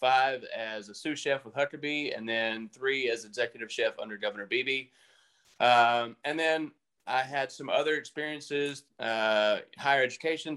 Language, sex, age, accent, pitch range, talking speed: English, male, 30-49, American, 115-155 Hz, 155 wpm